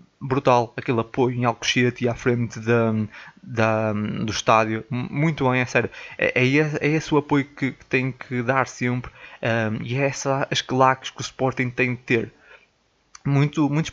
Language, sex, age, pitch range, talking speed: Portuguese, male, 20-39, 125-145 Hz, 155 wpm